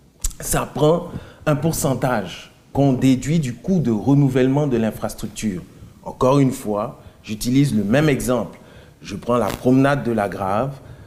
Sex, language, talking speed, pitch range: male, French, 140 wpm, 120-150 Hz